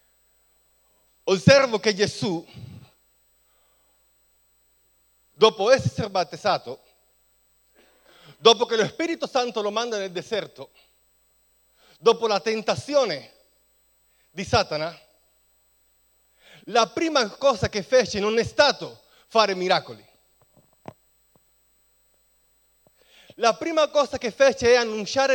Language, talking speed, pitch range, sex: Italian, 90 wpm, 195-265 Hz, male